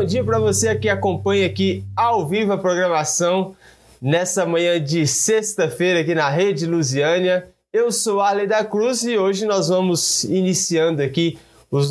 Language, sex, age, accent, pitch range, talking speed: Portuguese, male, 20-39, Brazilian, 155-200 Hz, 155 wpm